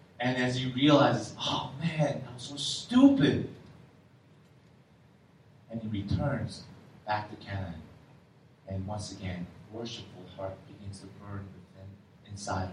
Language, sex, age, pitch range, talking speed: English, male, 30-49, 125-210 Hz, 120 wpm